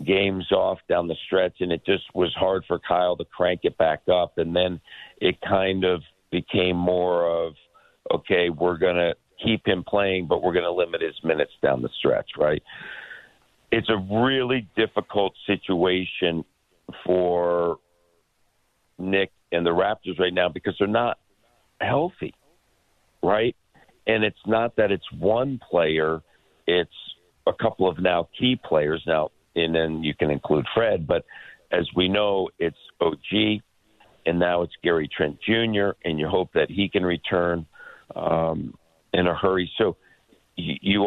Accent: American